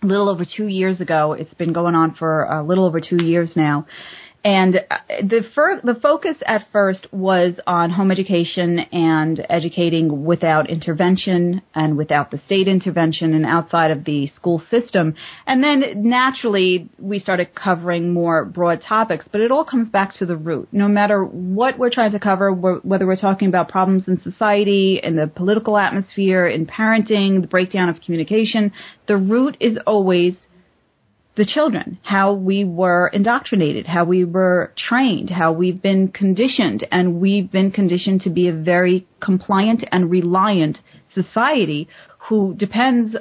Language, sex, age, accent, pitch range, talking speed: English, female, 30-49, American, 175-210 Hz, 160 wpm